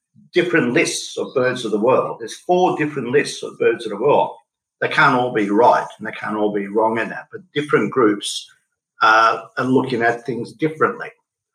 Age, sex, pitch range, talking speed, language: 50-69, male, 115-175 Hz, 195 wpm, English